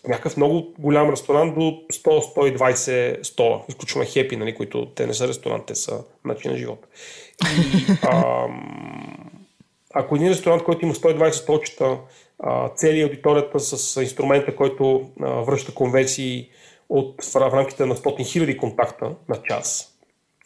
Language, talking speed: Bulgarian, 130 wpm